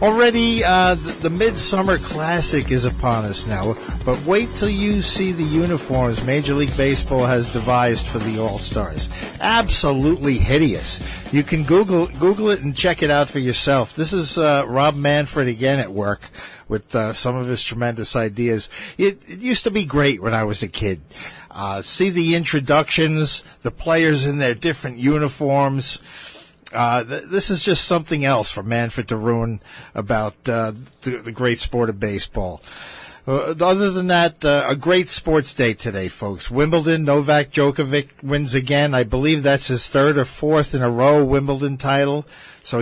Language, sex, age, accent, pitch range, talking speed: English, male, 50-69, American, 120-155 Hz, 170 wpm